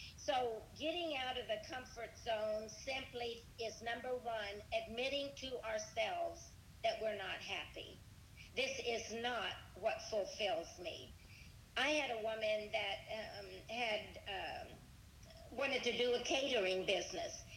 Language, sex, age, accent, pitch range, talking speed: English, female, 50-69, American, 220-295 Hz, 130 wpm